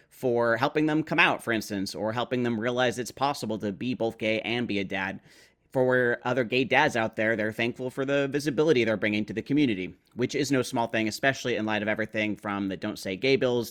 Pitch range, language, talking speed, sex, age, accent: 105-125 Hz, English, 230 wpm, male, 30-49, American